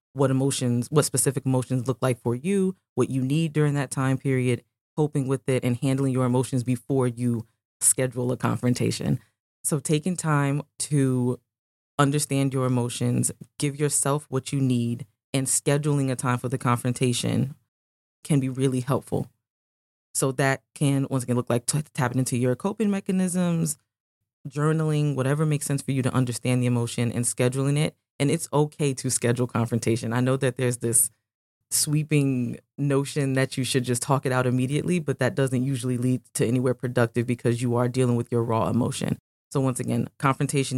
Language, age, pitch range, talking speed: English, 20-39, 120-140 Hz, 175 wpm